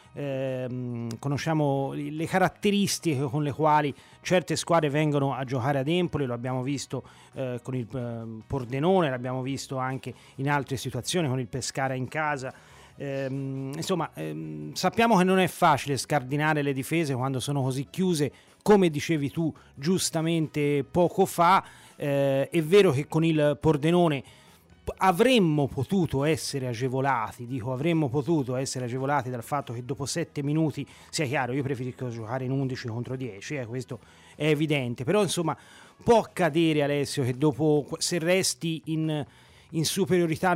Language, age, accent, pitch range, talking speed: Italian, 30-49, native, 130-165 Hz, 150 wpm